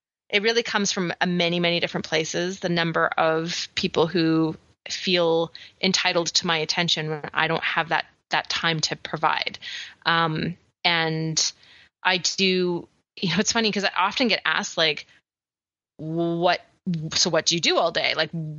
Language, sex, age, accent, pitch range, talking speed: English, female, 30-49, American, 165-195 Hz, 160 wpm